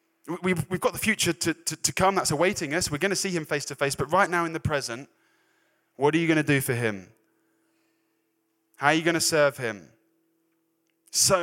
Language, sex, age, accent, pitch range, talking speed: English, male, 20-39, British, 105-140 Hz, 205 wpm